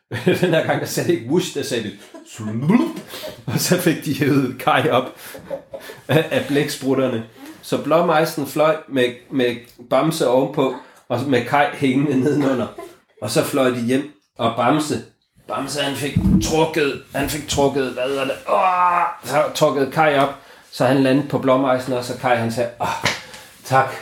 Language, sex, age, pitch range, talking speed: Danish, male, 30-49, 120-150 Hz, 155 wpm